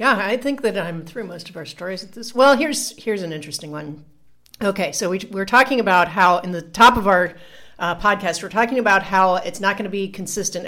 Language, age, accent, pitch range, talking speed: English, 40-59, American, 170-215 Hz, 235 wpm